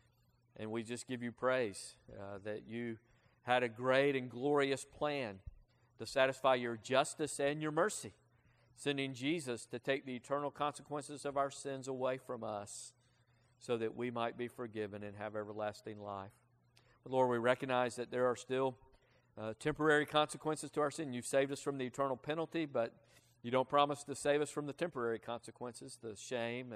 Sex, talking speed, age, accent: male, 175 wpm, 50-69, American